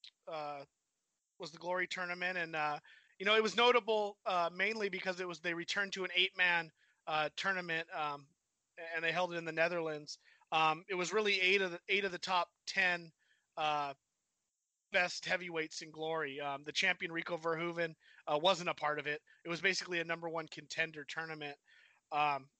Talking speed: 185 wpm